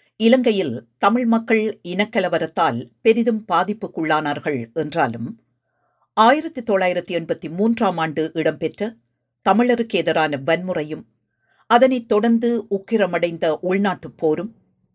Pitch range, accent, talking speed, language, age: 145-205 Hz, native, 75 wpm, Tamil, 50-69